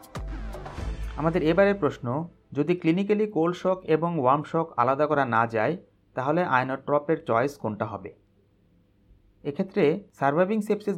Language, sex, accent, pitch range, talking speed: Bengali, male, native, 115-165 Hz, 115 wpm